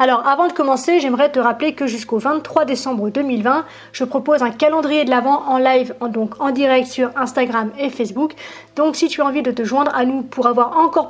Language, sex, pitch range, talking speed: French, female, 245-285 Hz, 215 wpm